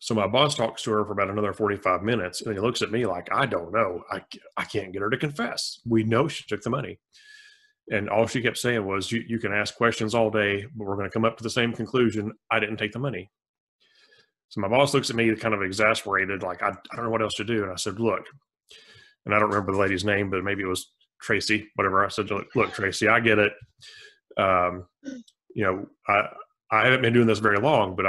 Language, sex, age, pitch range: English, male, 30-49, 100-130 Hz